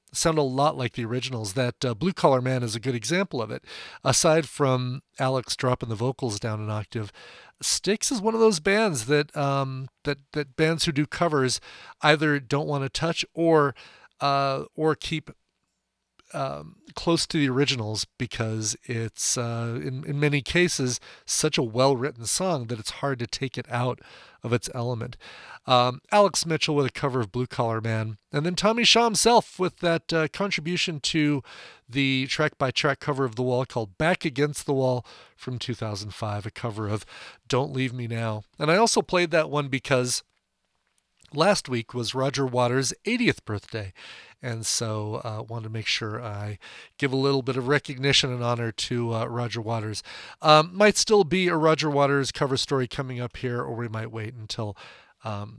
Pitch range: 115-150 Hz